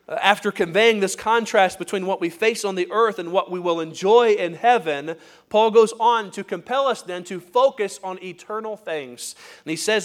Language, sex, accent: English, male, American